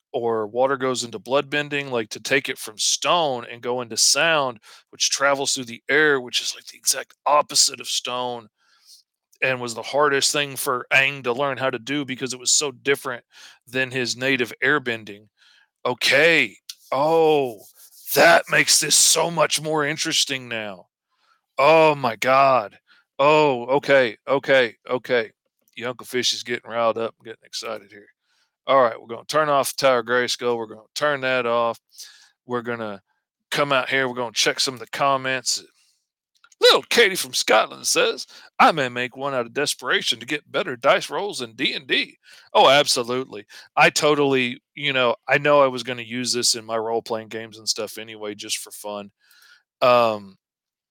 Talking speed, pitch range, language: 180 wpm, 115-140 Hz, English